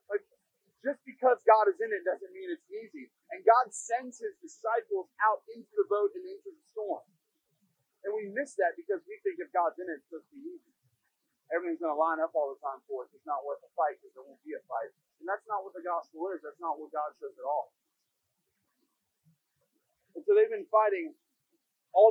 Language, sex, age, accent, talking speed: English, male, 40-59, American, 215 wpm